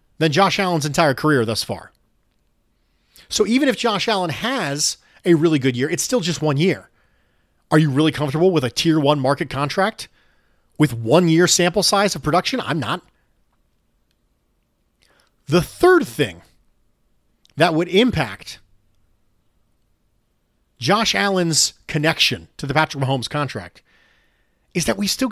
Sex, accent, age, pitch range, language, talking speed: male, American, 40-59, 120-175 Hz, English, 140 wpm